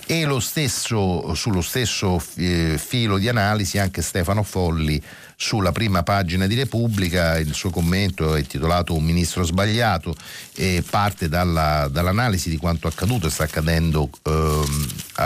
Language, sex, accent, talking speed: Italian, male, native, 140 wpm